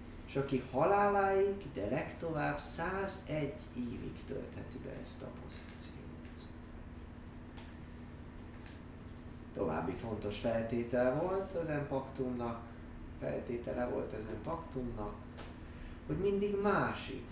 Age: 30-49